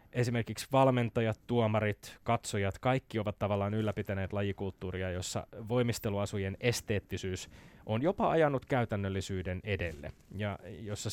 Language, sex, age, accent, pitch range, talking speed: Finnish, male, 20-39, native, 100-115 Hz, 100 wpm